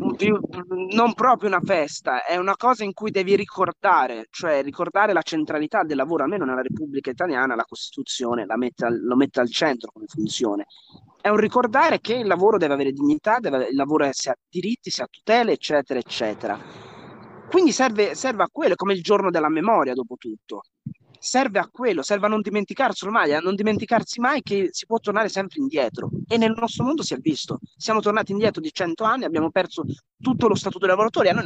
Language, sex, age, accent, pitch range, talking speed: Italian, male, 30-49, native, 150-220 Hz, 195 wpm